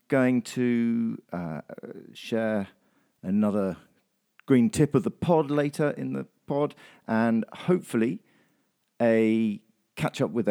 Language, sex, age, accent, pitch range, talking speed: English, male, 50-69, British, 100-135 Hz, 115 wpm